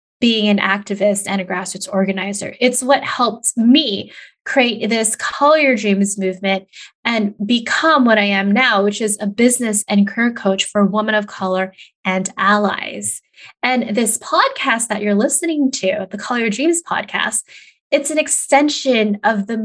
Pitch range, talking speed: 200-270 Hz, 160 wpm